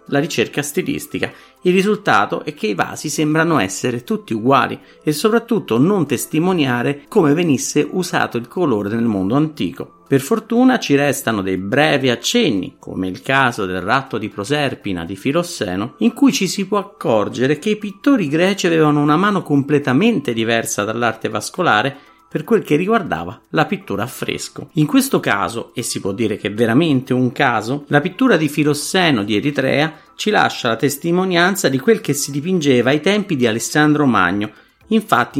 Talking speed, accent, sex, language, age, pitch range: 170 wpm, native, male, Italian, 50-69, 125-190 Hz